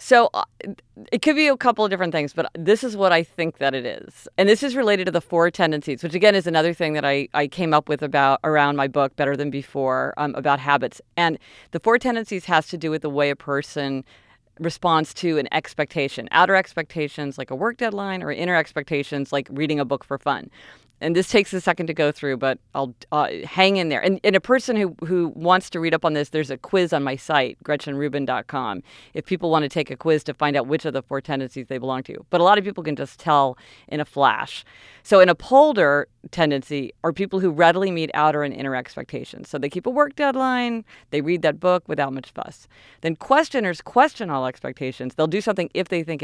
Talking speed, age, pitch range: 230 wpm, 40-59, 140-185 Hz